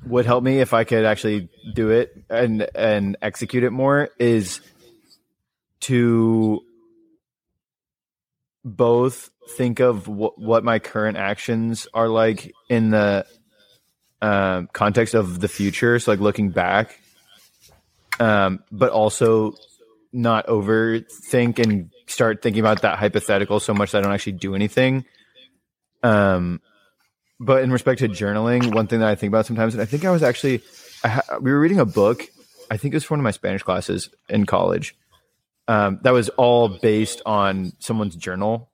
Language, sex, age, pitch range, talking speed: English, male, 20-39, 105-130 Hz, 155 wpm